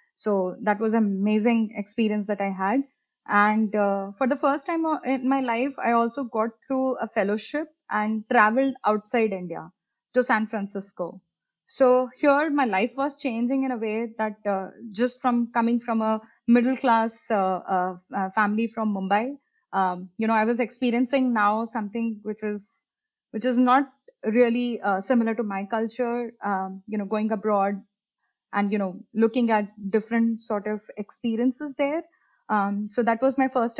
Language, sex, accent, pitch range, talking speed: English, female, Indian, 210-255 Hz, 170 wpm